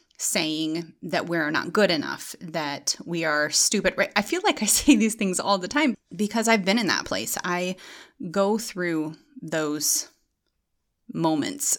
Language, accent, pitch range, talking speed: English, American, 165-215 Hz, 165 wpm